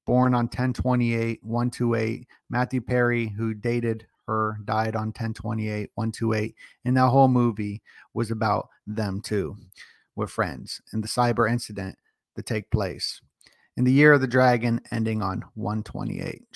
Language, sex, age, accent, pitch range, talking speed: English, male, 30-49, American, 110-125 Hz, 140 wpm